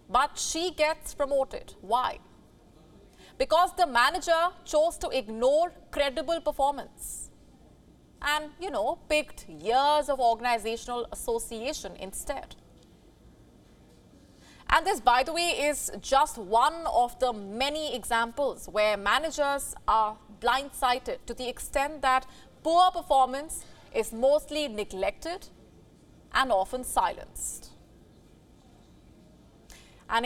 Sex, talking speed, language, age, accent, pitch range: female, 100 wpm, English, 30-49, Indian, 235-310 Hz